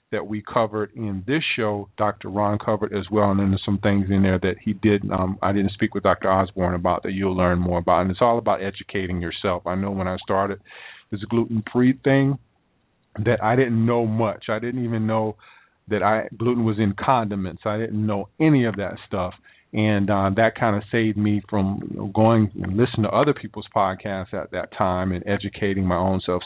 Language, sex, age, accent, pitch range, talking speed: English, male, 40-59, American, 100-120 Hz, 210 wpm